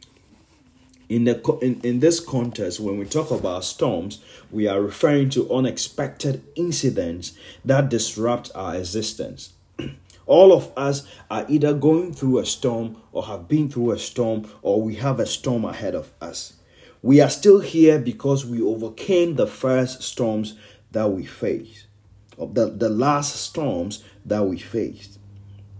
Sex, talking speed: male, 145 wpm